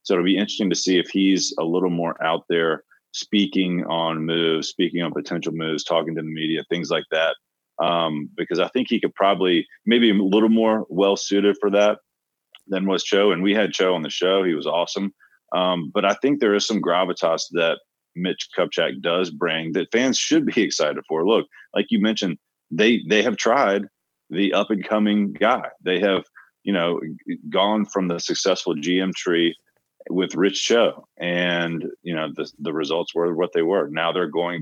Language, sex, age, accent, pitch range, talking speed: English, male, 30-49, American, 85-100 Hz, 190 wpm